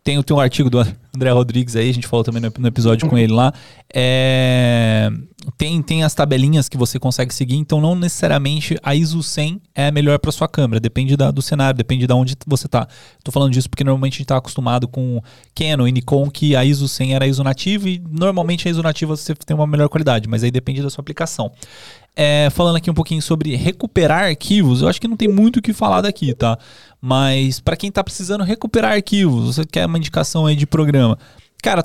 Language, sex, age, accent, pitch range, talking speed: Portuguese, male, 20-39, Brazilian, 130-170 Hz, 220 wpm